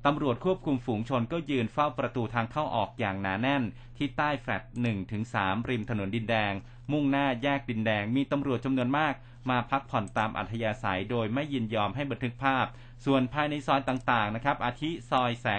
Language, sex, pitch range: Thai, male, 110-135 Hz